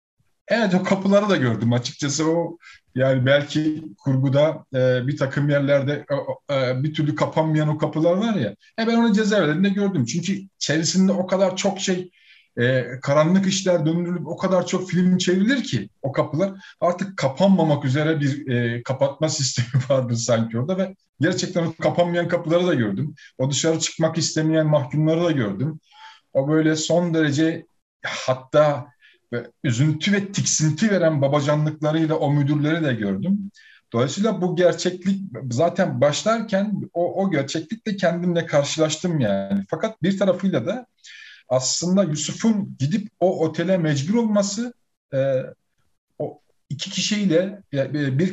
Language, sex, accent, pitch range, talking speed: Turkish, male, native, 145-190 Hz, 140 wpm